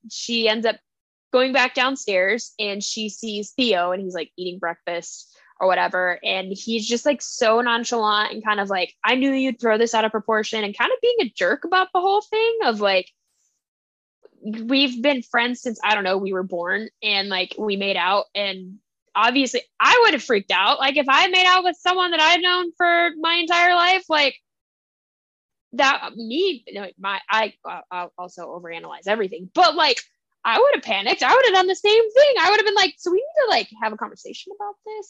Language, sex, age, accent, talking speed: English, female, 10-29, American, 205 wpm